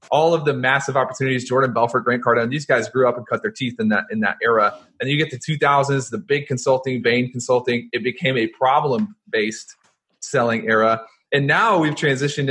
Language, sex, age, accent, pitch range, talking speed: English, male, 30-49, American, 120-155 Hz, 200 wpm